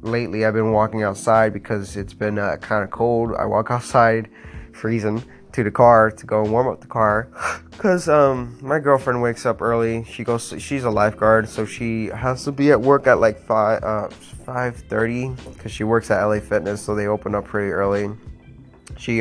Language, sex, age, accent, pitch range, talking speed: English, male, 20-39, American, 105-120 Hz, 195 wpm